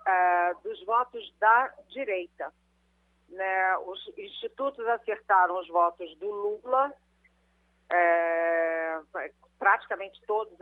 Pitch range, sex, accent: 180-235 Hz, female, Brazilian